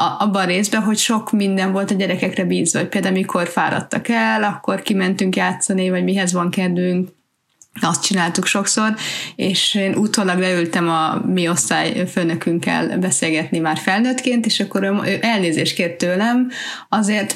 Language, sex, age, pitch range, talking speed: Hungarian, female, 30-49, 180-215 Hz, 155 wpm